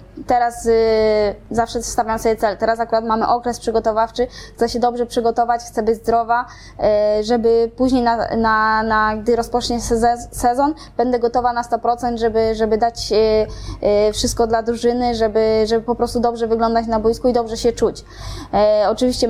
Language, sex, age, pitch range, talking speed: Polish, female, 20-39, 220-240 Hz, 155 wpm